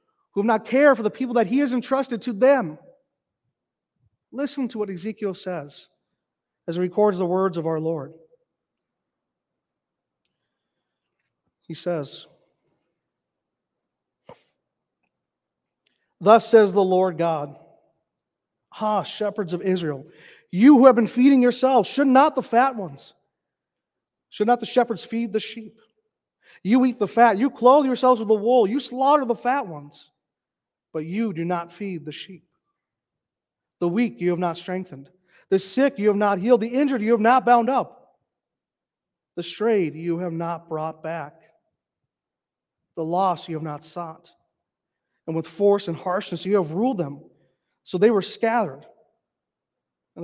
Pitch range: 170-240 Hz